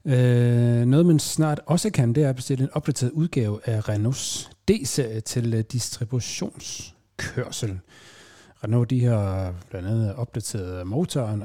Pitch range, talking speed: 105-130 Hz, 130 wpm